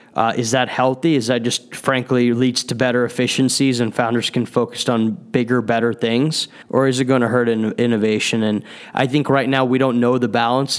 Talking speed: 205 wpm